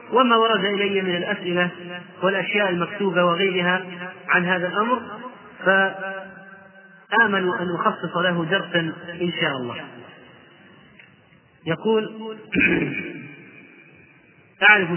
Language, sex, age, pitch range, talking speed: Arabic, male, 30-49, 180-210 Hz, 85 wpm